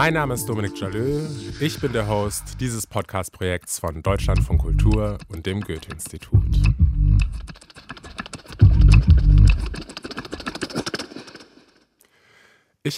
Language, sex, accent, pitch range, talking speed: German, male, German, 95-115 Hz, 90 wpm